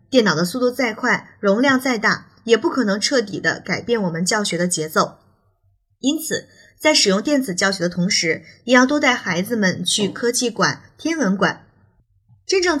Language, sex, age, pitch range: Chinese, female, 20-39, 180-245 Hz